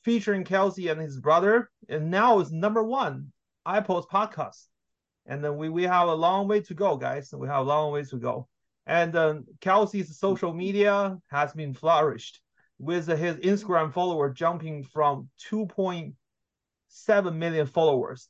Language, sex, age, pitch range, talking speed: English, male, 30-49, 135-180 Hz, 155 wpm